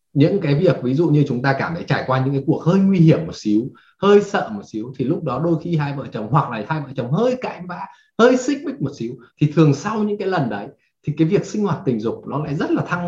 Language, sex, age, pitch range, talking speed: Vietnamese, male, 20-39, 140-185 Hz, 295 wpm